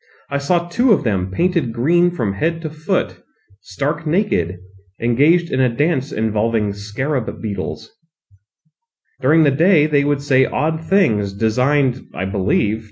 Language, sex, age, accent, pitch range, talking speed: English, male, 30-49, American, 105-160 Hz, 145 wpm